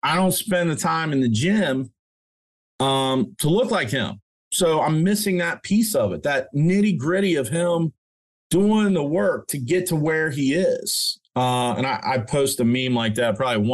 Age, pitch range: 30-49, 115-160 Hz